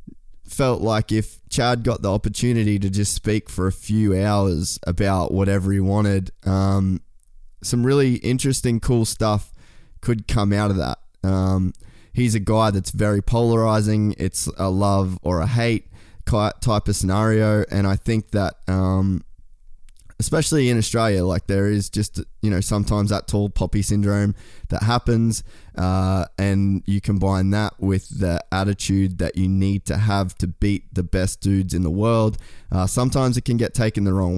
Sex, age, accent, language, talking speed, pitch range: male, 10-29, Australian, English, 165 wpm, 95-110 Hz